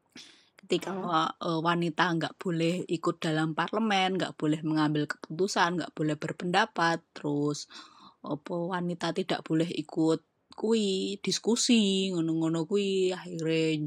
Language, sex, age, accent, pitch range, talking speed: Indonesian, female, 20-39, native, 160-190 Hz, 105 wpm